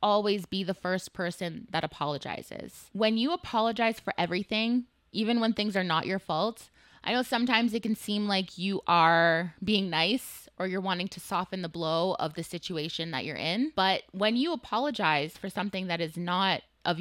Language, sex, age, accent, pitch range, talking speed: English, female, 20-39, American, 175-215 Hz, 185 wpm